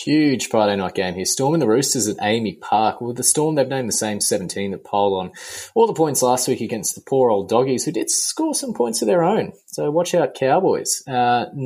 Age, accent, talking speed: 20-39, Australian, 240 wpm